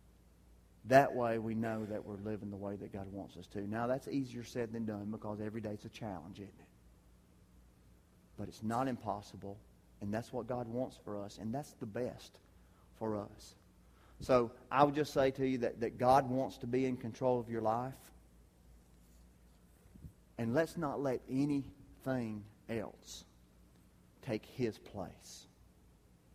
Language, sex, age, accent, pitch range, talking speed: English, male, 40-59, American, 105-135 Hz, 160 wpm